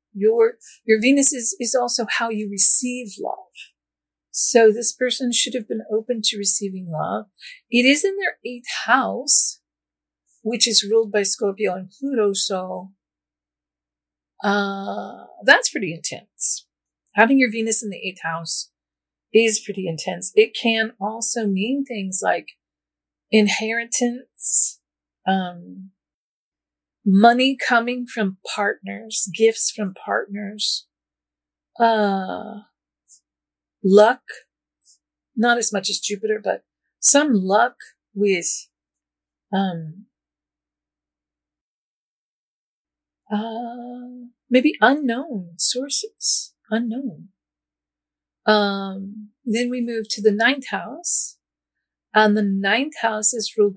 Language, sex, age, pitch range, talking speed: English, female, 50-69, 195-245 Hz, 105 wpm